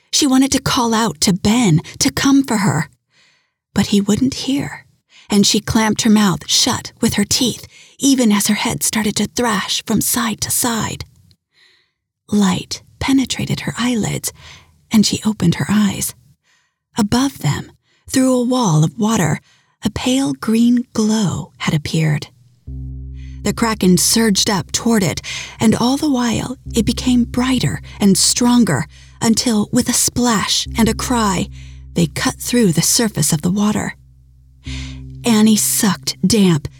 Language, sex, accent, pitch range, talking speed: English, female, American, 160-235 Hz, 145 wpm